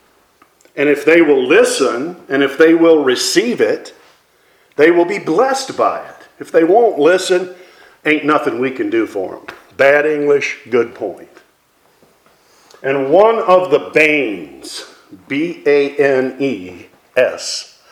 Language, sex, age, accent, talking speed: English, male, 50-69, American, 125 wpm